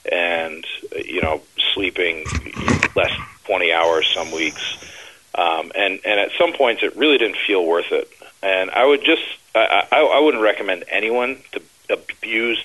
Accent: American